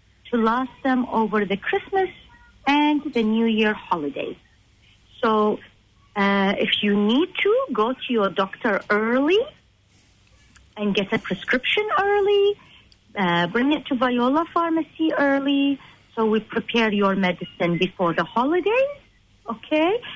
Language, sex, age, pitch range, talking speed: English, female, 40-59, 190-275 Hz, 130 wpm